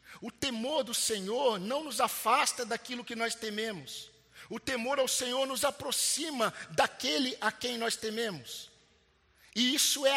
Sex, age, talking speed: male, 50-69, 155 wpm